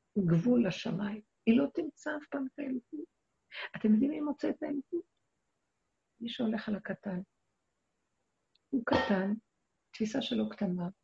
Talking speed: 130 wpm